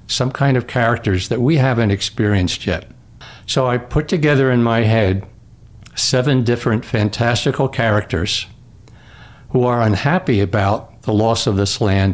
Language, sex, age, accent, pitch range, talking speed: English, male, 60-79, American, 105-125 Hz, 145 wpm